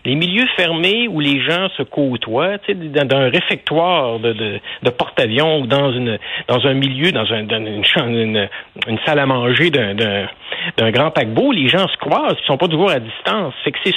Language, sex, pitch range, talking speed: French, male, 130-180 Hz, 220 wpm